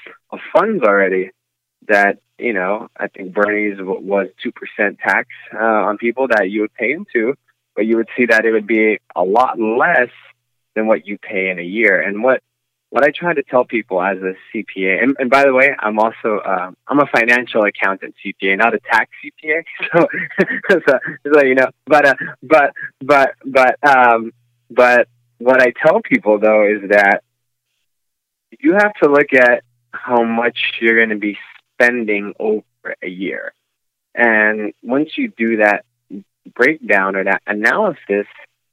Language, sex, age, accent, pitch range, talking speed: English, male, 20-39, American, 100-125 Hz, 165 wpm